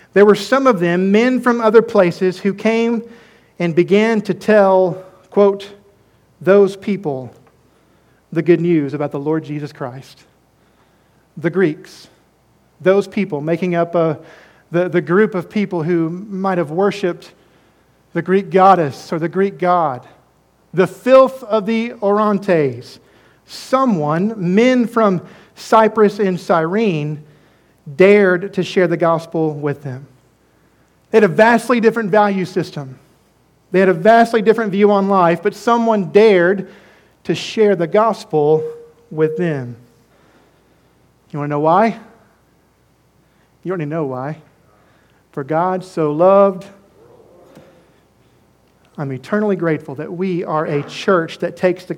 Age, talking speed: 50-69, 135 wpm